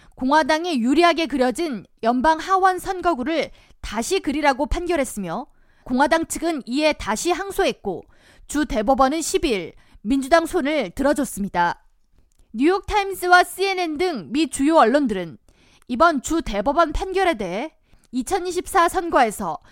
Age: 20-39